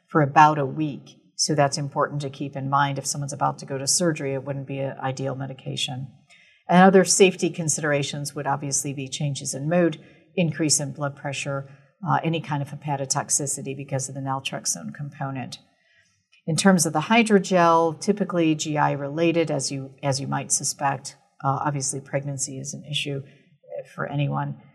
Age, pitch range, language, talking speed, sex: 50-69, 140-165 Hz, English, 165 wpm, female